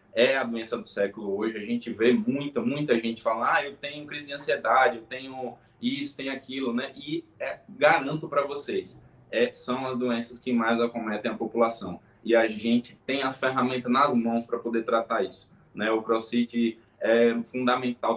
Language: Portuguese